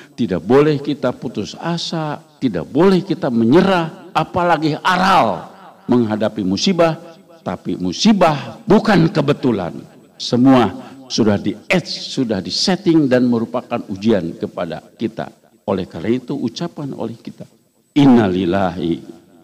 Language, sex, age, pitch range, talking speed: Indonesian, male, 60-79, 105-150 Hz, 110 wpm